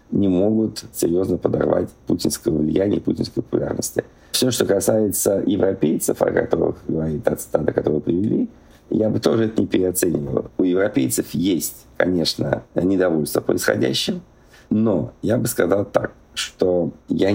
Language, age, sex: Russian, 50-69, male